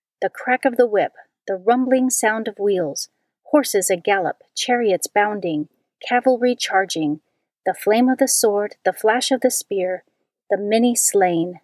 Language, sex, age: English, female, 40-59